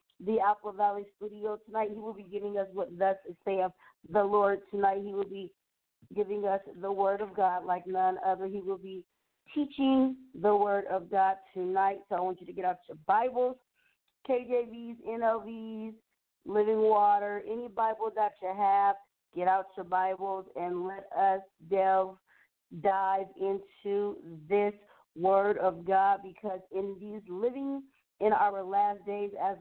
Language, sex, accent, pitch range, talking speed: English, female, American, 190-215 Hz, 160 wpm